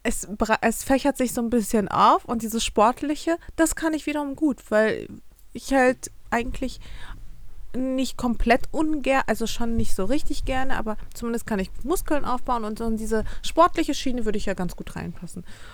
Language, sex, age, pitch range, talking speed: German, female, 30-49, 195-240 Hz, 185 wpm